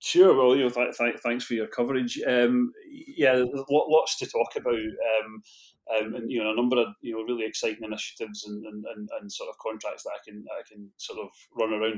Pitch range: 110-120 Hz